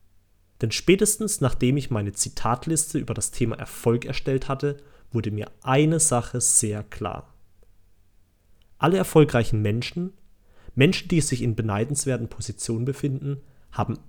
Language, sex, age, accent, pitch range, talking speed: German, male, 30-49, German, 105-150 Hz, 125 wpm